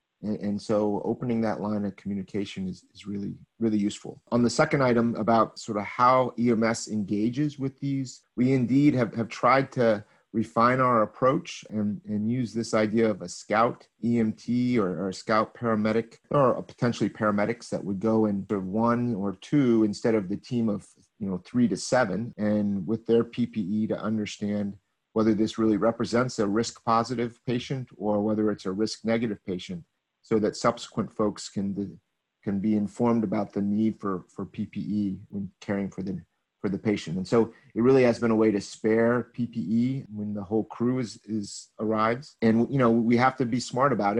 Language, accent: English, American